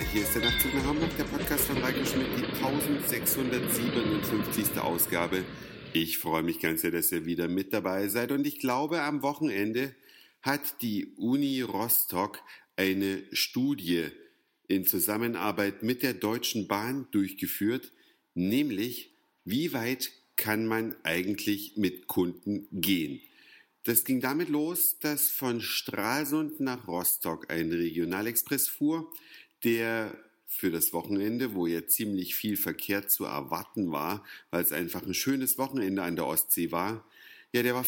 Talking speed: 140 wpm